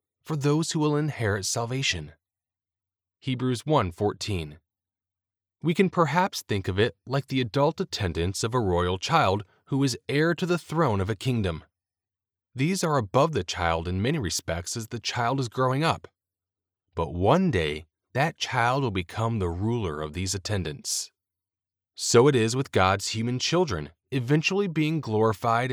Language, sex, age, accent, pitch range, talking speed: English, male, 30-49, American, 90-130 Hz, 155 wpm